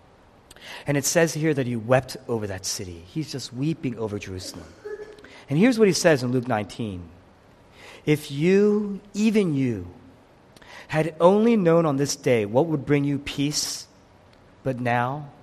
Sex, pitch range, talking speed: male, 125-205 Hz, 155 wpm